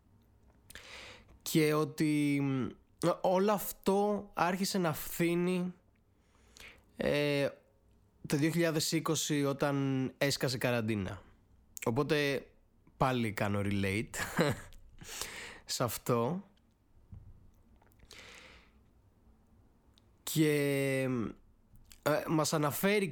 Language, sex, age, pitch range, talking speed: Greek, male, 20-39, 120-160 Hz, 60 wpm